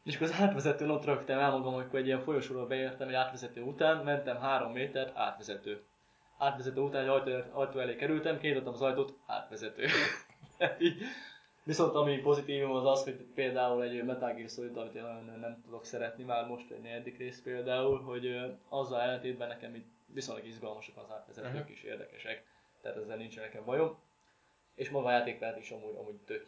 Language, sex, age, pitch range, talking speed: Hungarian, male, 20-39, 115-135 Hz, 165 wpm